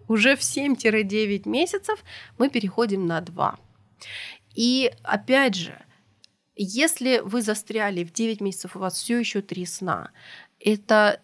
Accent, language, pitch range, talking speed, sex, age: native, Russian, 185-235 Hz, 130 wpm, female, 30-49